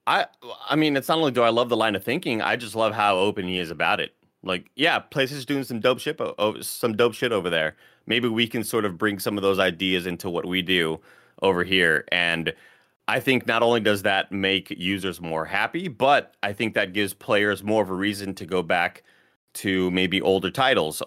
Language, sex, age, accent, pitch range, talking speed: English, male, 30-49, American, 85-110 Hz, 220 wpm